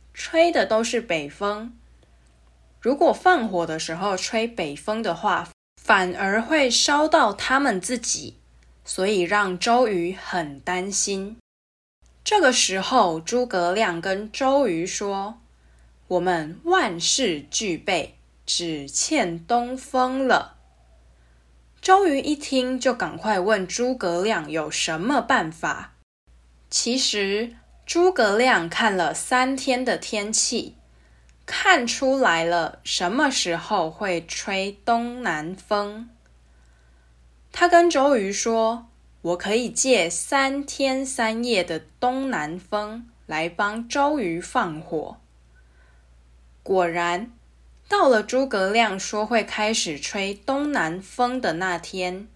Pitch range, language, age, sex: 160-245 Hz, English, 10-29, female